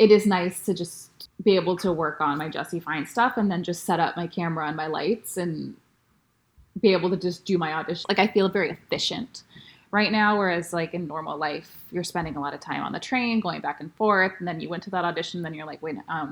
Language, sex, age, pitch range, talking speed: English, female, 20-39, 170-210 Hz, 255 wpm